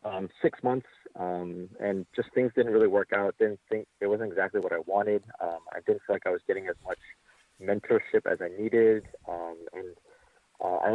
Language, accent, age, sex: English, American, 30-49, male